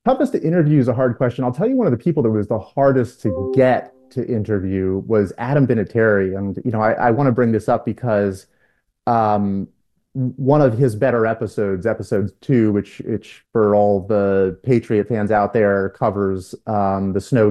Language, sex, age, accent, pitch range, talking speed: English, male, 30-49, American, 100-125 Hz, 190 wpm